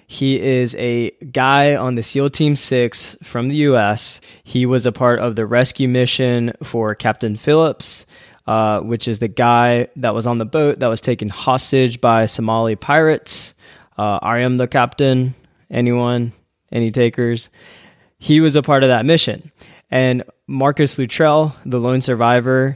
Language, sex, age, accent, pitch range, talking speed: English, male, 20-39, American, 115-135 Hz, 160 wpm